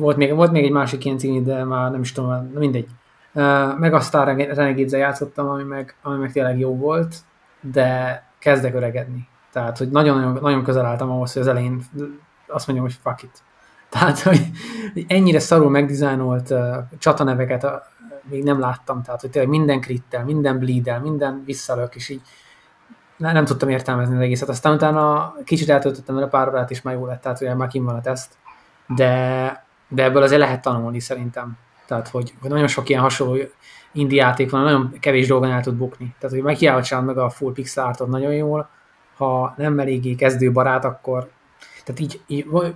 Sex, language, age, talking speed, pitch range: male, Hungarian, 20-39, 180 wpm, 125-145 Hz